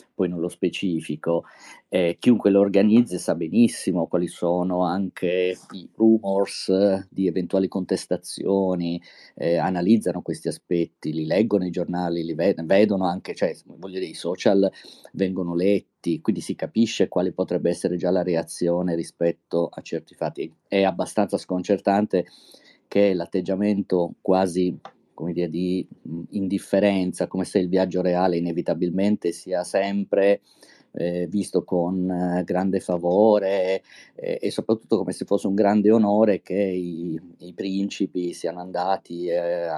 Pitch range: 85-100 Hz